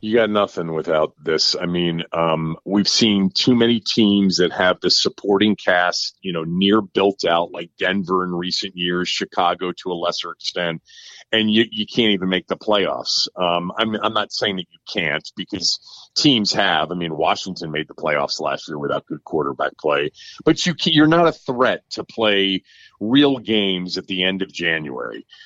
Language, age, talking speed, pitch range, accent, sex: English, 40-59, 190 wpm, 95-120 Hz, American, male